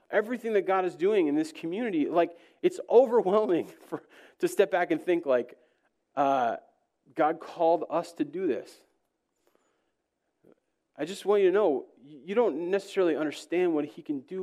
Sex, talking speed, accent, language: male, 160 wpm, American, English